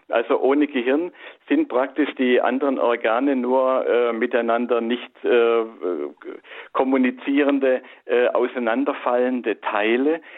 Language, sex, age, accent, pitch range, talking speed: German, male, 50-69, German, 120-145 Hz, 100 wpm